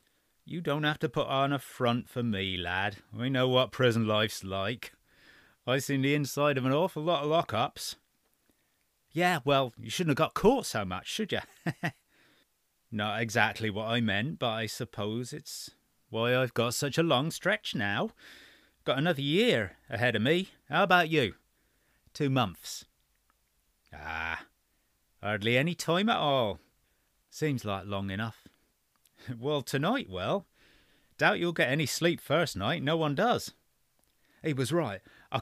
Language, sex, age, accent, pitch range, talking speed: English, male, 30-49, British, 105-150 Hz, 160 wpm